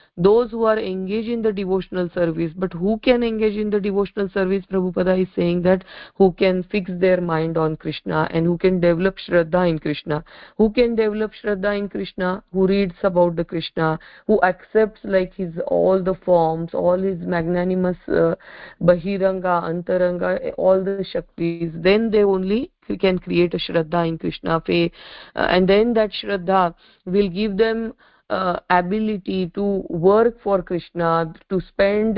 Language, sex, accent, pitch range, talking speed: English, female, Indian, 175-205 Hz, 160 wpm